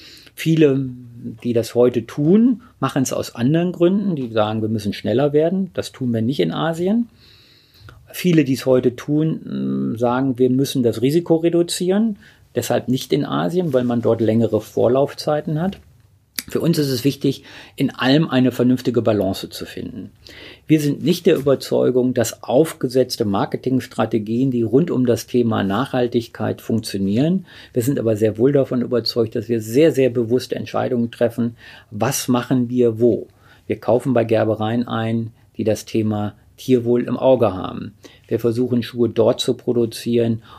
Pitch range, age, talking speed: 115-135 Hz, 40-59, 155 wpm